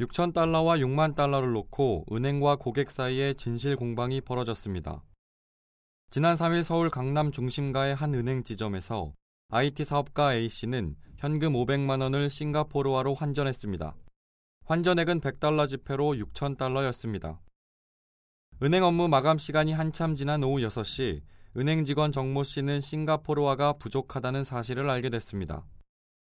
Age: 20-39